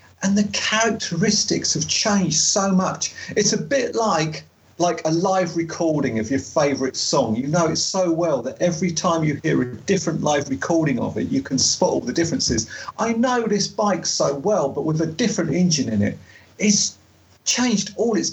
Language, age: English, 40-59